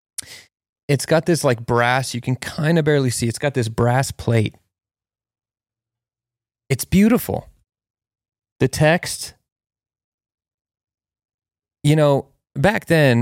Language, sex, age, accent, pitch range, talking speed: English, male, 30-49, American, 105-125 Hz, 110 wpm